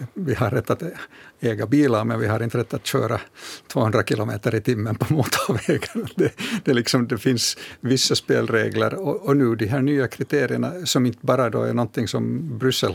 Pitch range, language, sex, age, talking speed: 115-135 Hz, Swedish, male, 60-79, 190 wpm